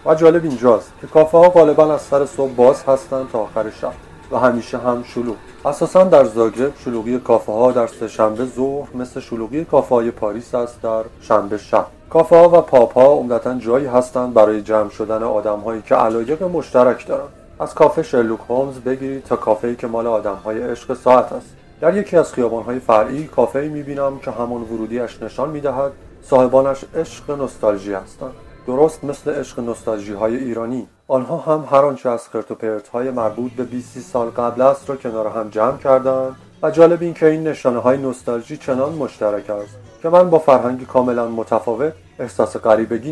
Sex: male